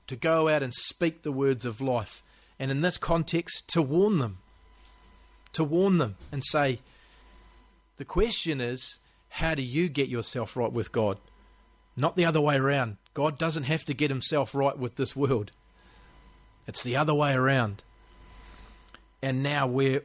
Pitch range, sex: 120-145 Hz, male